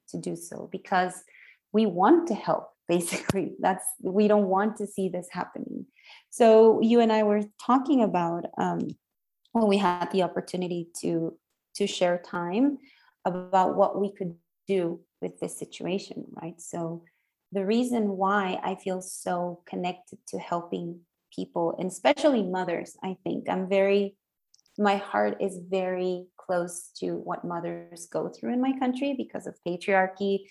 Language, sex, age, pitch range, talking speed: English, female, 30-49, 180-210 Hz, 150 wpm